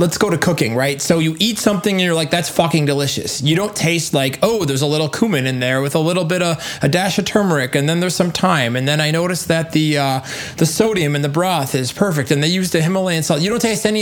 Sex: male